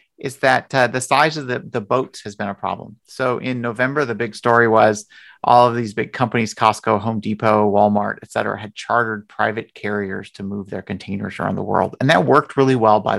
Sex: male